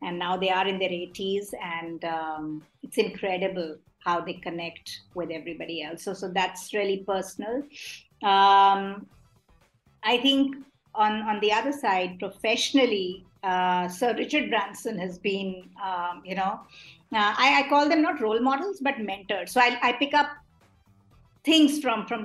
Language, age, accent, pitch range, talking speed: English, 50-69, Indian, 190-245 Hz, 155 wpm